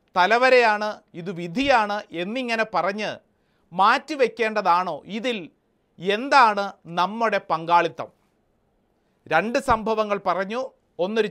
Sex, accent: male, native